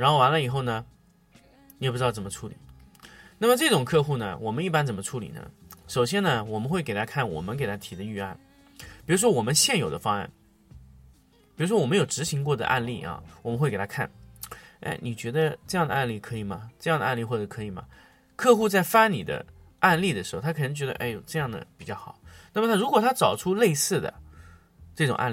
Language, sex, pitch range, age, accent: Chinese, male, 115-170 Hz, 20-39, native